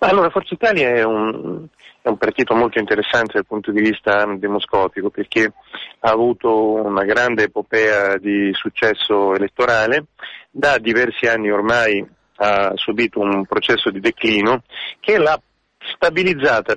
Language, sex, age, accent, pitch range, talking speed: Italian, male, 30-49, native, 110-165 Hz, 130 wpm